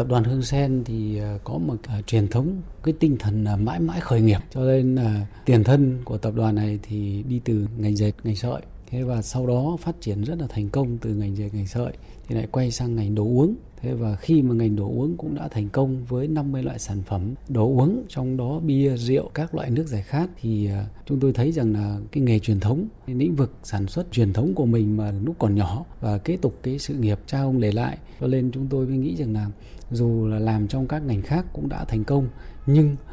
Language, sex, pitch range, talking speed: Vietnamese, male, 105-140 Hz, 245 wpm